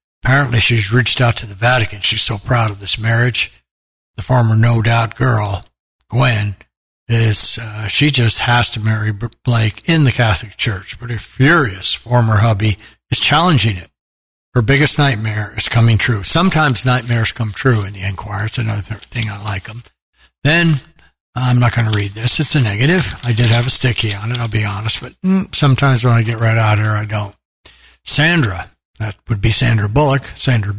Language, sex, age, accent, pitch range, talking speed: English, male, 60-79, American, 100-125 Hz, 185 wpm